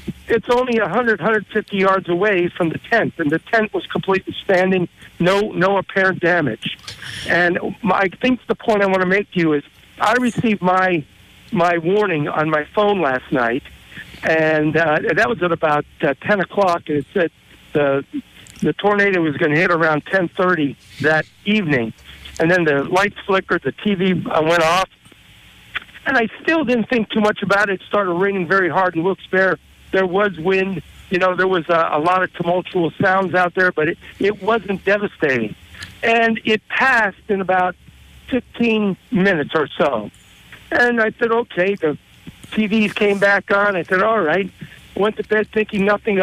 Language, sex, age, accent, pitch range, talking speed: English, male, 60-79, American, 165-205 Hz, 180 wpm